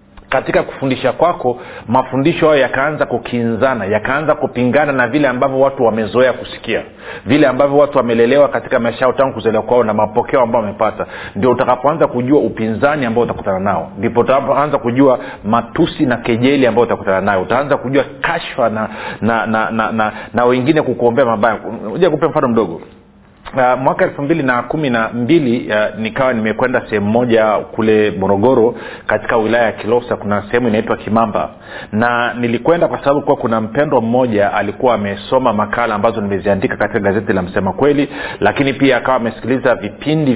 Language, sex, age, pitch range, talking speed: Swahili, male, 40-59, 110-135 Hz, 155 wpm